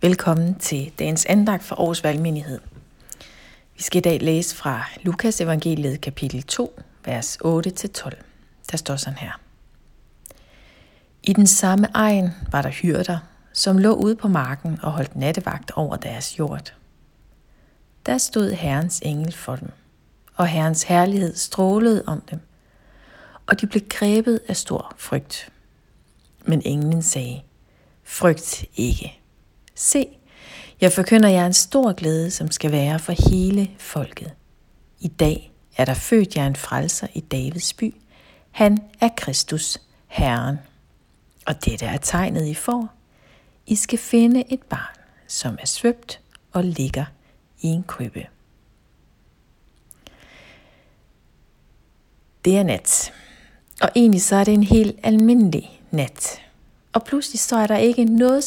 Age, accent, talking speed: 60-79, native, 135 wpm